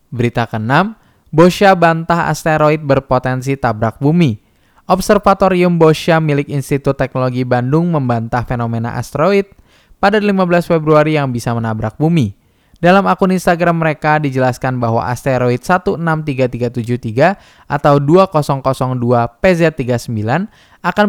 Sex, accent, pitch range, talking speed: male, native, 120-165 Hz, 100 wpm